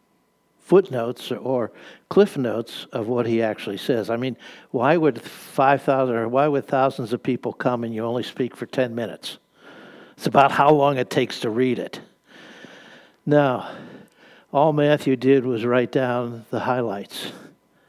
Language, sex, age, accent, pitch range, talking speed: English, male, 60-79, American, 120-150 Hz, 155 wpm